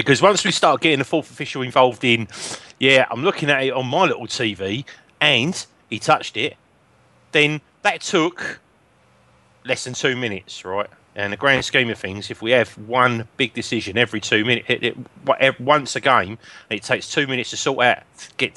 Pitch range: 120-170 Hz